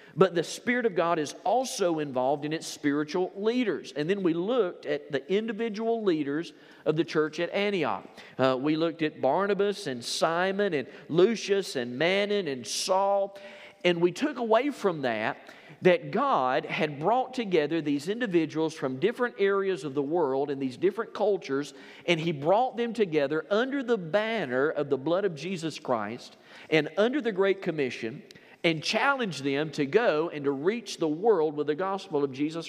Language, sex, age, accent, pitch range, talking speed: English, male, 40-59, American, 140-195 Hz, 175 wpm